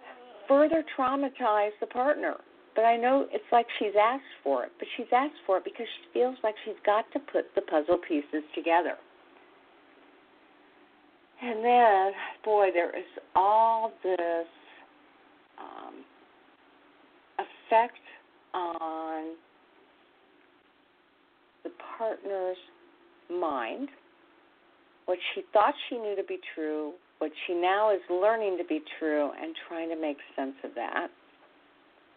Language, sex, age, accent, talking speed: English, female, 50-69, American, 125 wpm